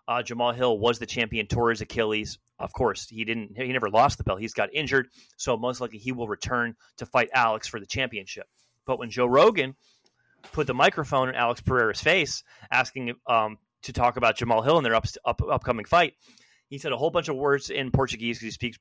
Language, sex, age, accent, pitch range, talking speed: English, male, 30-49, American, 115-140 Hz, 215 wpm